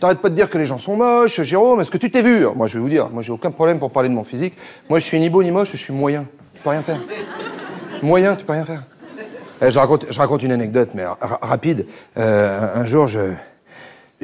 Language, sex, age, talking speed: French, male, 40-59, 260 wpm